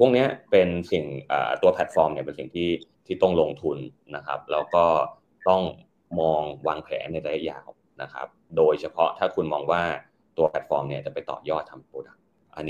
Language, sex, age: Thai, male, 20-39